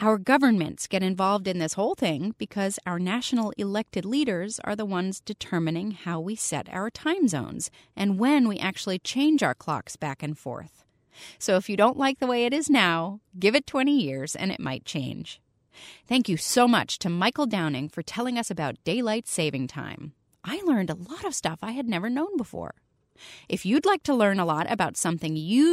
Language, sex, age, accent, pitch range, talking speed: English, female, 30-49, American, 170-250 Hz, 200 wpm